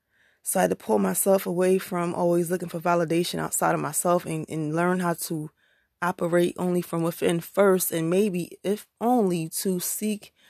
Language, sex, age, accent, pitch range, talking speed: English, female, 20-39, American, 155-185 Hz, 175 wpm